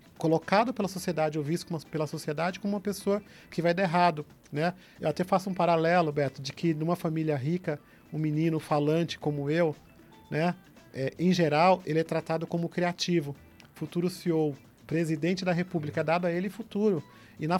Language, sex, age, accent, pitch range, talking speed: Portuguese, male, 40-59, Brazilian, 155-195 Hz, 175 wpm